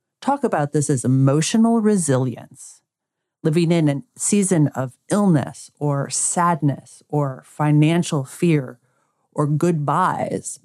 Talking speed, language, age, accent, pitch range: 105 wpm, English, 40-59, American, 135-180 Hz